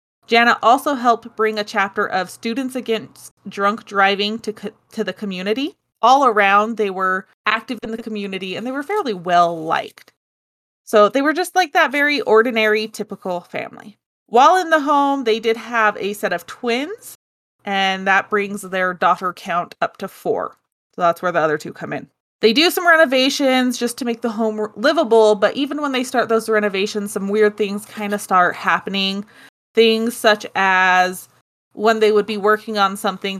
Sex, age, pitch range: female, 20-39, 195-250 Hz